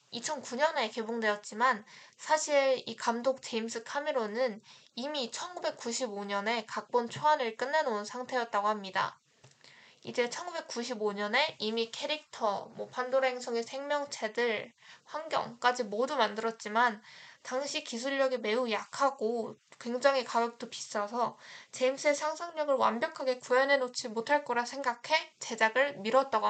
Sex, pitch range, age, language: female, 220-270 Hz, 20-39, Korean